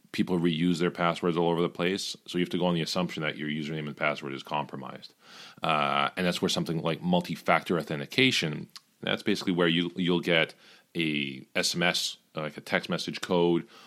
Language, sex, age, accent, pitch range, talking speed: English, male, 40-59, American, 75-90 Hz, 190 wpm